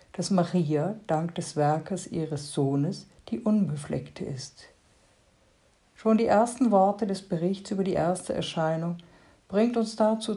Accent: German